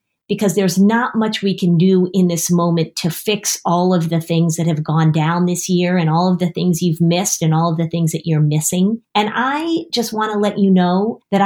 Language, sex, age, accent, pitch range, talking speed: English, female, 40-59, American, 170-210 Hz, 240 wpm